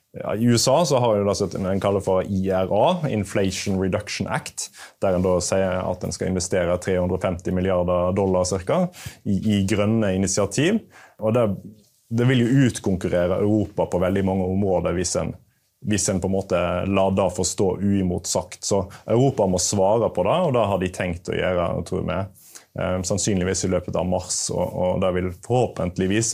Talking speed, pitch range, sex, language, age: 165 wpm, 95-110 Hz, male, English, 30-49